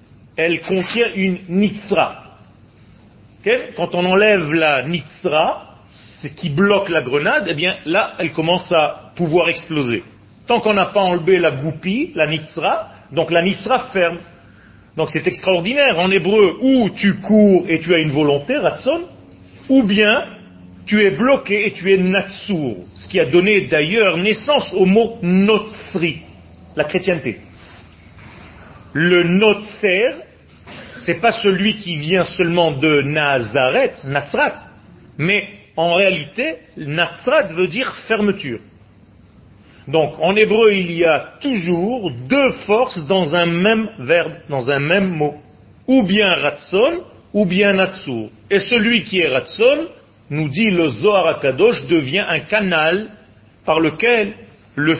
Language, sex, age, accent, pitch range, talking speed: French, male, 40-59, French, 145-205 Hz, 140 wpm